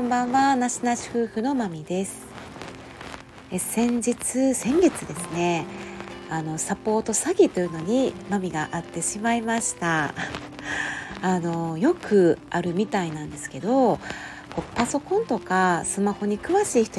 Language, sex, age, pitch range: Japanese, female, 40-59, 165-235 Hz